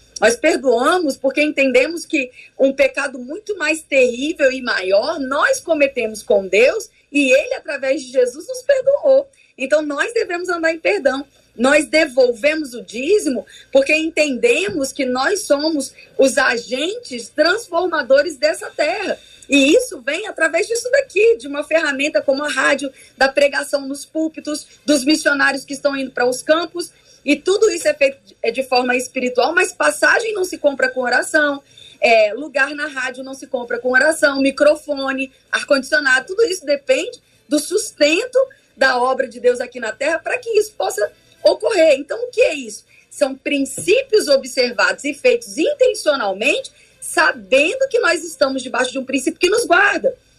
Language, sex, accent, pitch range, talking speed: Portuguese, female, Brazilian, 270-340 Hz, 155 wpm